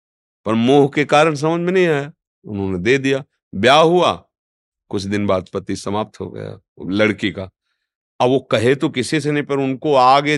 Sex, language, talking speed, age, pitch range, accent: male, Hindi, 185 wpm, 50-69, 100-140 Hz, native